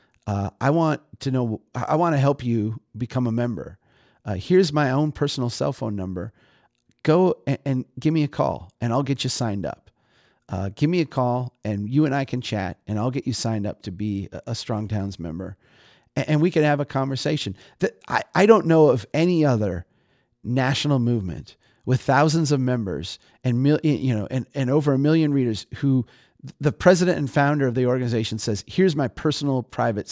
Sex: male